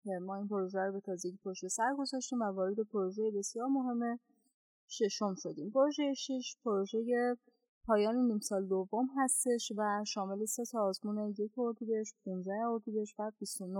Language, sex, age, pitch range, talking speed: Persian, female, 30-49, 205-240 Hz, 135 wpm